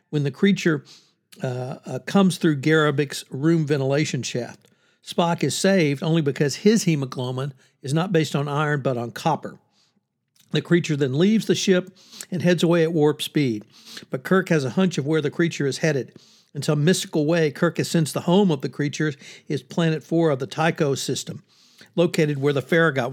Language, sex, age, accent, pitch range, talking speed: English, male, 60-79, American, 140-175 Hz, 185 wpm